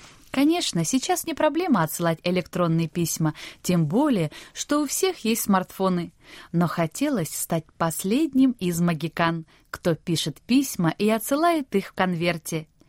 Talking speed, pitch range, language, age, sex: 130 wpm, 165-240 Hz, Russian, 20-39, female